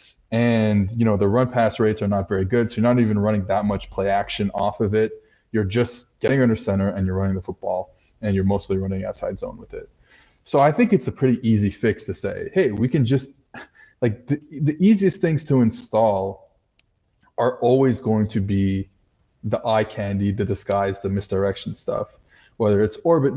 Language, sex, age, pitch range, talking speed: English, male, 20-39, 100-120 Hz, 200 wpm